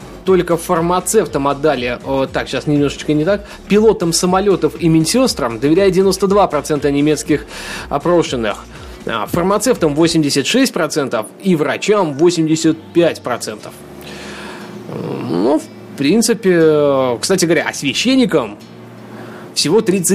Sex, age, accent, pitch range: male, 20-39, native, 135-170 Hz